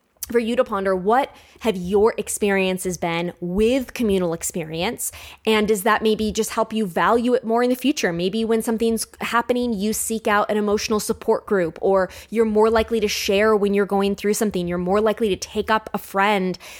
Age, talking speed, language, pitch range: 20-39, 195 wpm, English, 185-225 Hz